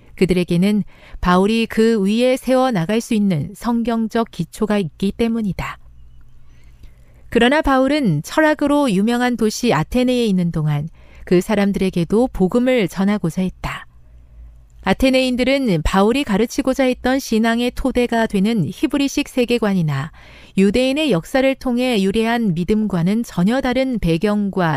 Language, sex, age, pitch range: Korean, female, 40-59, 170-240 Hz